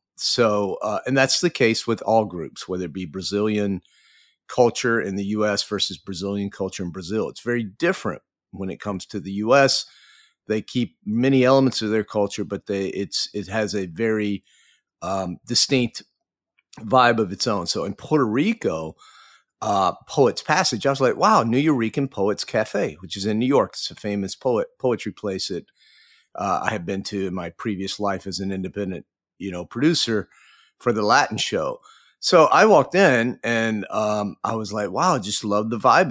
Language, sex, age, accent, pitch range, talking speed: English, male, 40-59, American, 95-120 Hz, 185 wpm